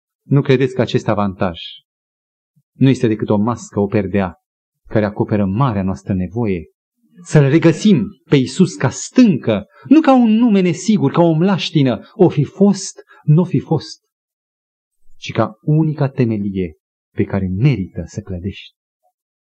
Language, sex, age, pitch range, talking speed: Romanian, male, 40-59, 110-165 Hz, 140 wpm